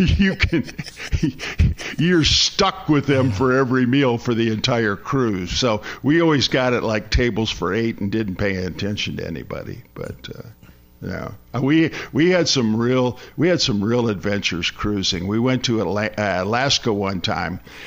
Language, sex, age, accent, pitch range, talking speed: English, male, 50-69, American, 100-125 Hz, 175 wpm